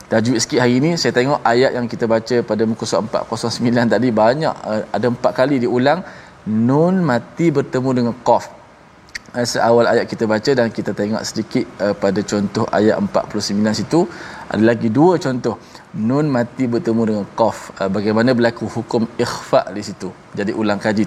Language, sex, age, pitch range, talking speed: Malayalam, male, 20-39, 115-145 Hz, 160 wpm